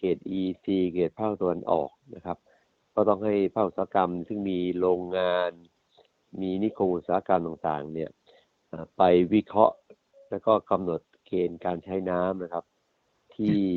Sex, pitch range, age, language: male, 85-100 Hz, 60-79, Thai